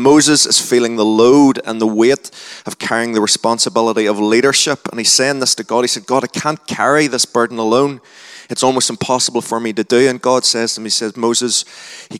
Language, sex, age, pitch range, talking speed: English, male, 20-39, 105-125 Hz, 220 wpm